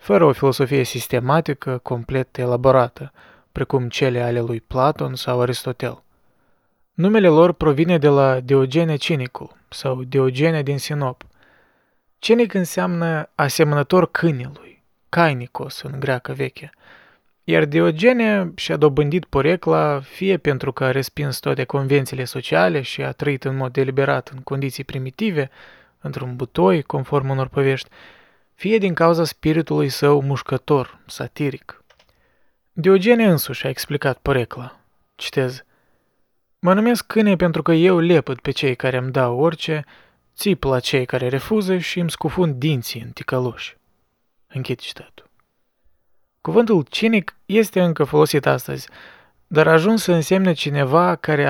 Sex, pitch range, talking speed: male, 130-165 Hz, 130 wpm